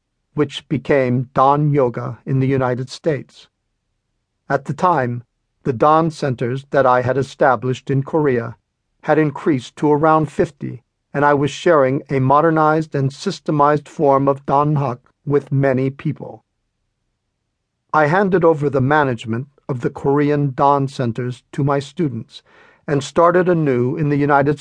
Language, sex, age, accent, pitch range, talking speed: English, male, 50-69, American, 130-155 Hz, 145 wpm